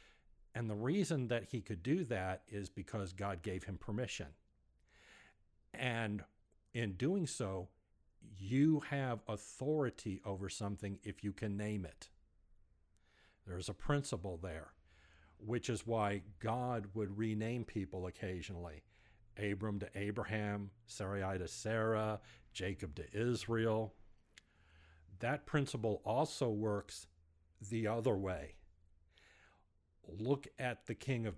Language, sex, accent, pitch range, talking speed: English, male, American, 95-115 Hz, 115 wpm